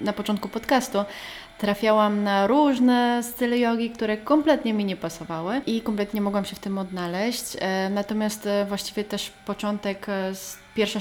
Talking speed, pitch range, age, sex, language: 140 wpm, 195-230 Hz, 20-39, female, Polish